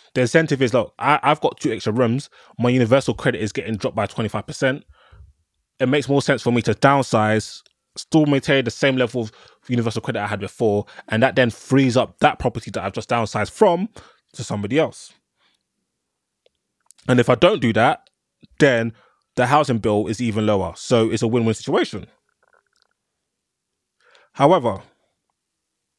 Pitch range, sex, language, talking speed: 115-140 Hz, male, English, 160 wpm